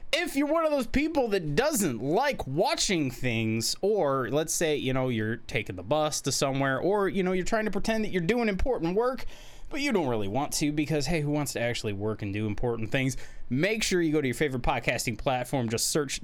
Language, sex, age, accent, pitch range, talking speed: English, male, 20-39, American, 115-180 Hz, 230 wpm